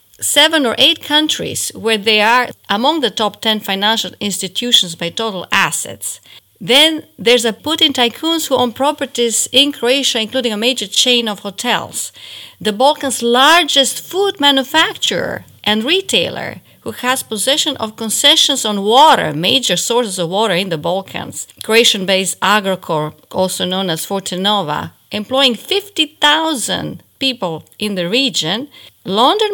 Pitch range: 190-265 Hz